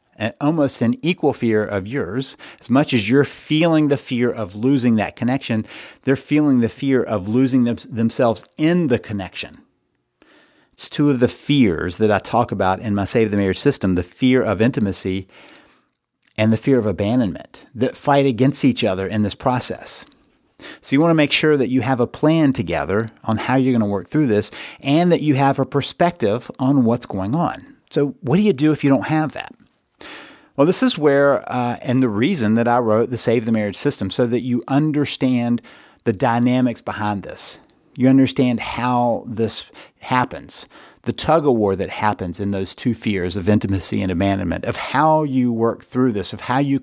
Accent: American